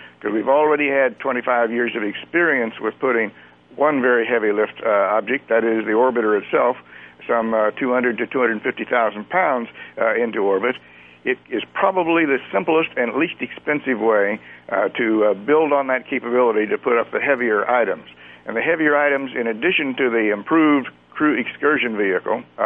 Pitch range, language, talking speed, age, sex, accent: 110-145 Hz, English, 170 wpm, 60-79, male, American